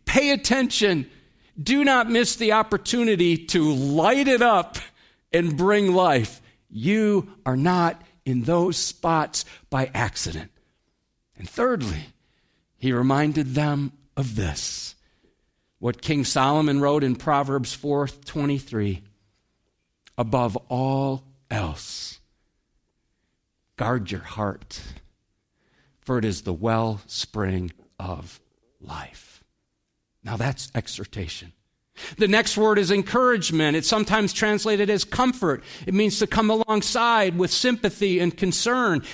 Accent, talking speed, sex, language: American, 110 wpm, male, English